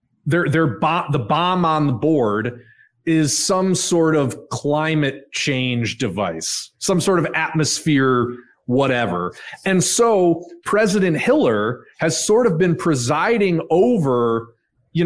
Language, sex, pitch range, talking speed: English, male, 125-170 Hz, 110 wpm